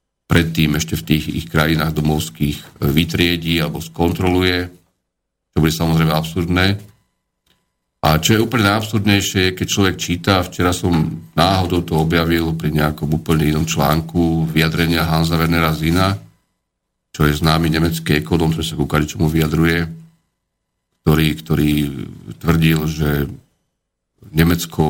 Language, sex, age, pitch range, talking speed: Slovak, male, 50-69, 80-90 Hz, 125 wpm